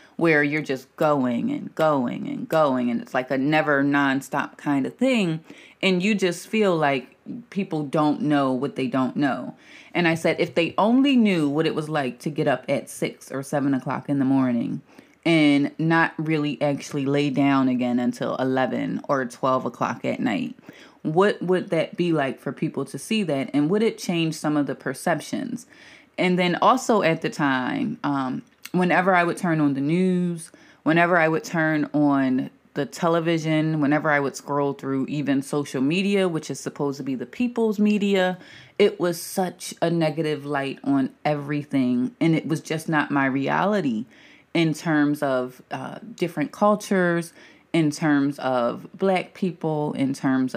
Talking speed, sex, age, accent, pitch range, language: 175 wpm, female, 20-39, American, 140-180 Hz, English